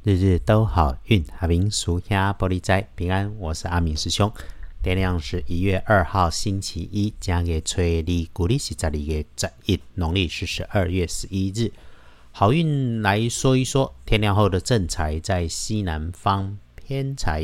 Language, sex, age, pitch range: Chinese, male, 50-69, 85-105 Hz